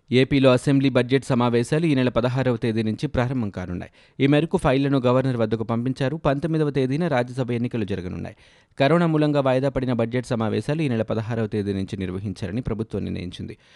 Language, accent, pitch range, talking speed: Telugu, native, 110-135 Hz, 155 wpm